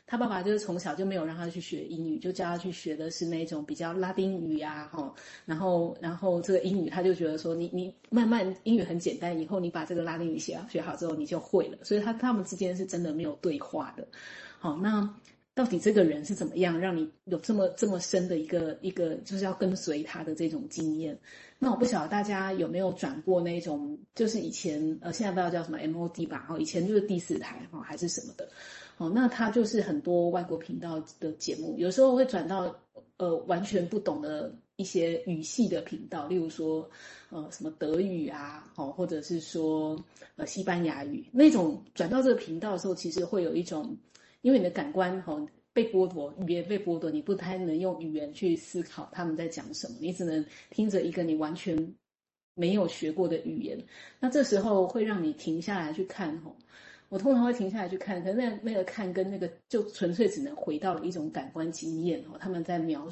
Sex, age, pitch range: female, 30-49, 165-200 Hz